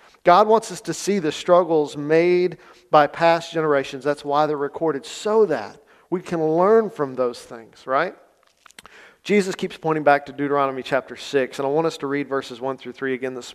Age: 40-59